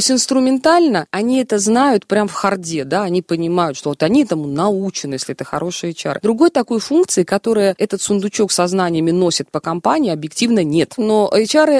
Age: 20-39